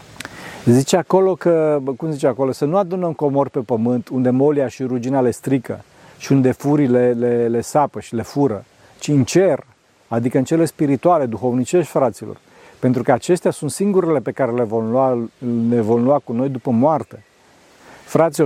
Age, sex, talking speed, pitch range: 40-59, male, 175 wpm, 125-160 Hz